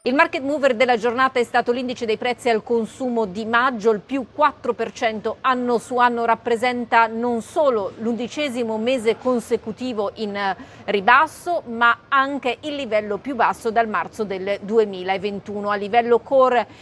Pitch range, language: 210-245 Hz, Italian